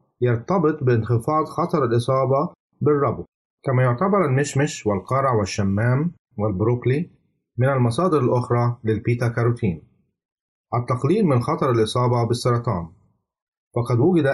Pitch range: 115-145 Hz